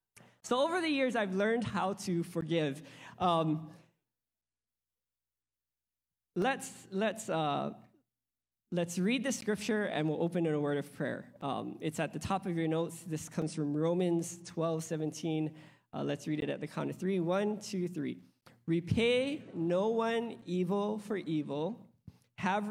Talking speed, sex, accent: 155 wpm, male, American